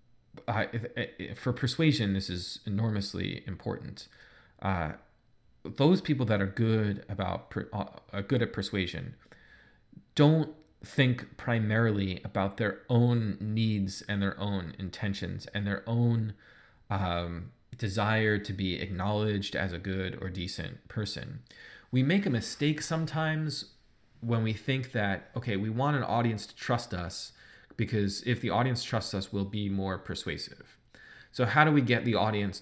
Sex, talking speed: male, 145 wpm